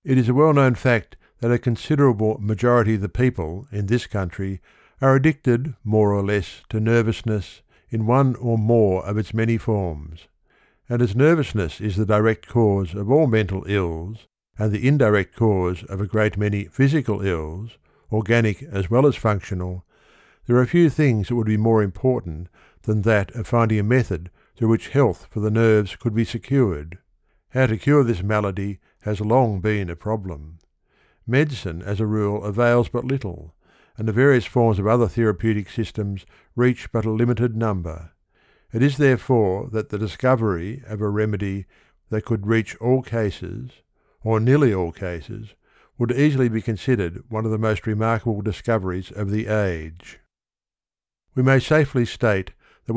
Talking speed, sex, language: 165 wpm, male, English